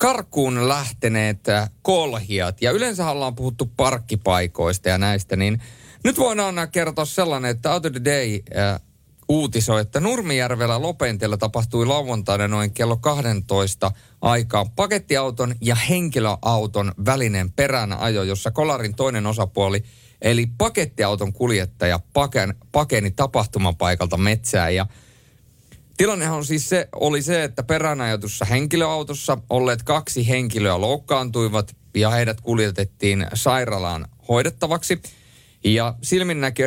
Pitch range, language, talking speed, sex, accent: 105-135 Hz, Finnish, 110 wpm, male, native